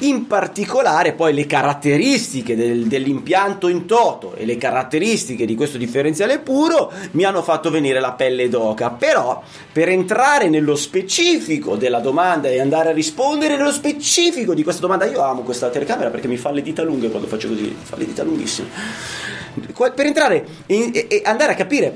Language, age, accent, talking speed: Italian, 30-49, native, 165 wpm